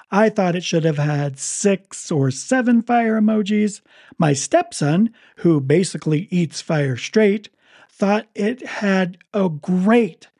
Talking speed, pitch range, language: 135 wpm, 155-210 Hz, English